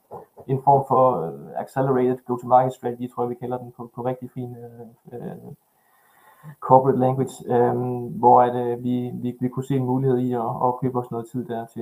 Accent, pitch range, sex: native, 120-130 Hz, male